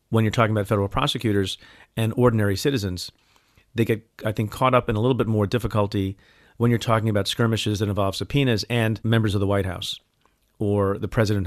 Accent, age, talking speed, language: American, 40-59, 200 wpm, English